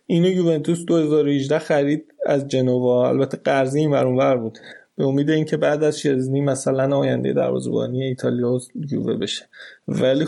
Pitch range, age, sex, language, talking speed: 135-155 Hz, 20-39, male, Persian, 140 wpm